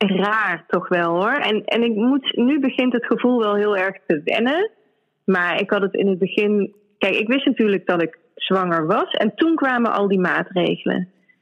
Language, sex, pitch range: Dutch, female, 185-235 Hz